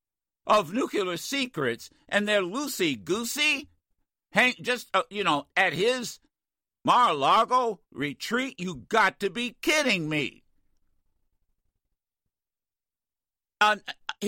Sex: male